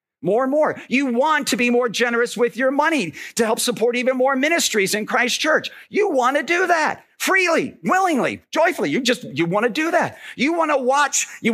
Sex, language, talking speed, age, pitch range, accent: male, English, 215 wpm, 50-69, 195-270 Hz, American